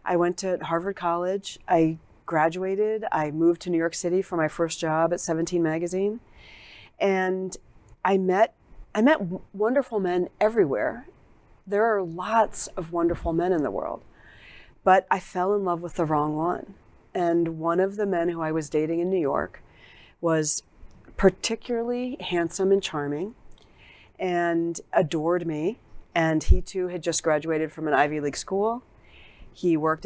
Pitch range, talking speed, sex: 160-195 Hz, 160 wpm, female